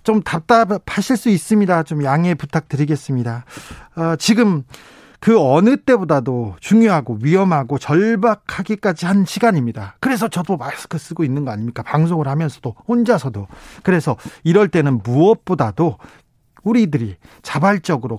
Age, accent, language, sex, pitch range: 40-59, native, Korean, male, 140-195 Hz